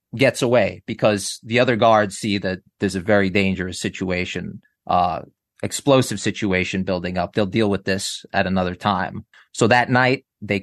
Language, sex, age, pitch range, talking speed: English, male, 30-49, 95-115 Hz, 165 wpm